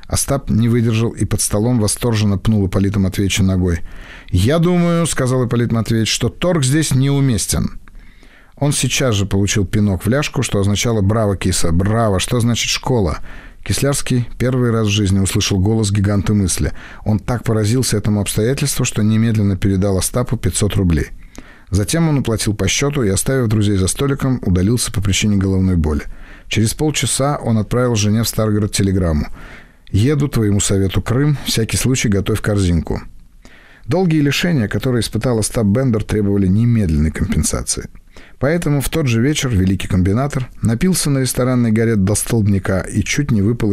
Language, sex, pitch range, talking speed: Russian, male, 100-130 Hz, 155 wpm